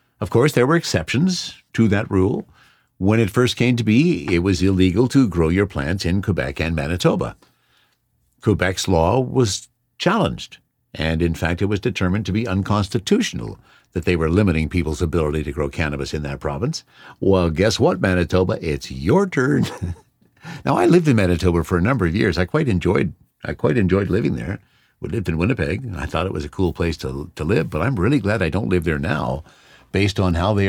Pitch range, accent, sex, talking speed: 85-115 Hz, American, male, 200 wpm